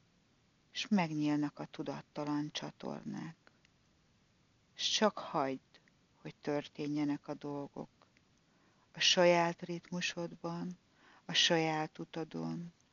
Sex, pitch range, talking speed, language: female, 150-175 Hz, 85 wpm, Hungarian